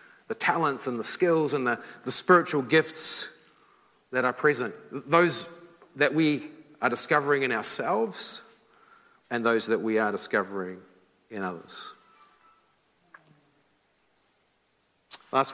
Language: English